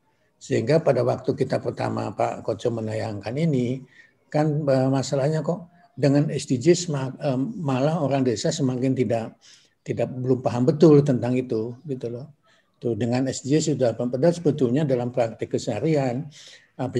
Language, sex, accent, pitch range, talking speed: Indonesian, male, native, 120-145 Hz, 135 wpm